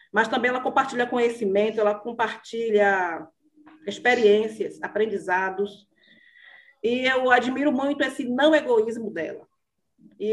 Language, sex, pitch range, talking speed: Portuguese, female, 205-255 Hz, 105 wpm